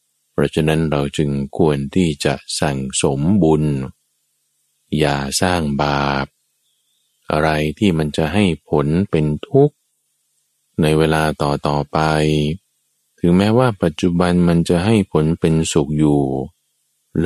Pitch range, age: 70-90 Hz, 20-39